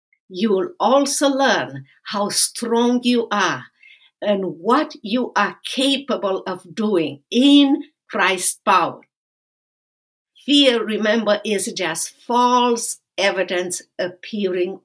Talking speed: 100 wpm